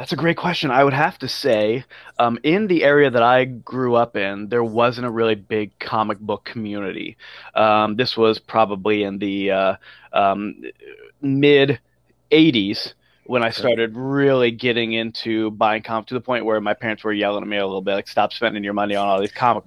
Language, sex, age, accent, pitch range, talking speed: English, male, 20-39, American, 110-130 Hz, 200 wpm